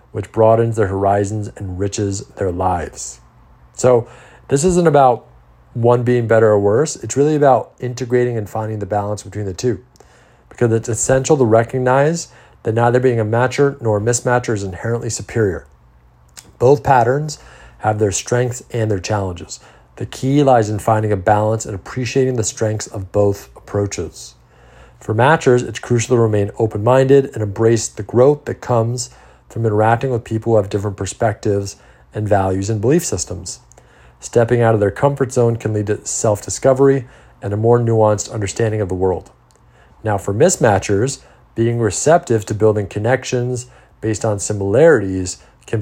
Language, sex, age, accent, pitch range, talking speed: English, male, 40-59, American, 100-125 Hz, 160 wpm